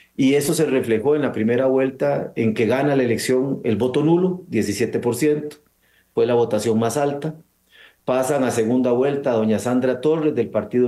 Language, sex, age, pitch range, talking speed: Spanish, male, 40-59, 115-135 Hz, 180 wpm